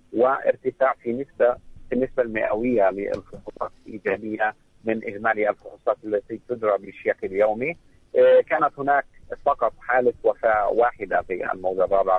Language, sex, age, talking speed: Arabic, male, 50-69, 115 wpm